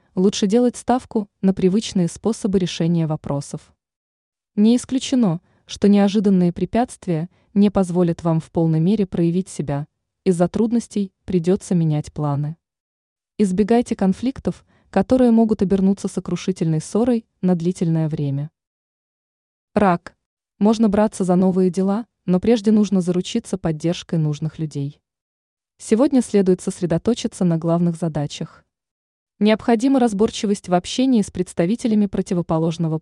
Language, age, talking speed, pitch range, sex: Russian, 20-39, 115 wpm, 165-215 Hz, female